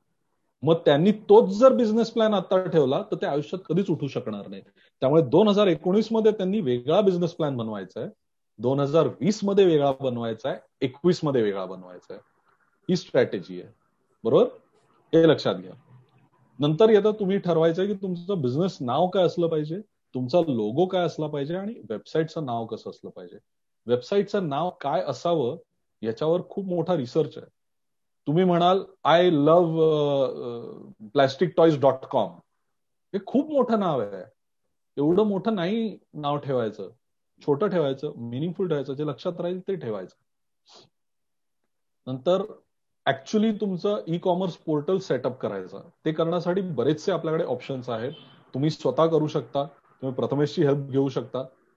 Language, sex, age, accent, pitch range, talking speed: Marathi, male, 40-59, native, 140-190 Hz, 145 wpm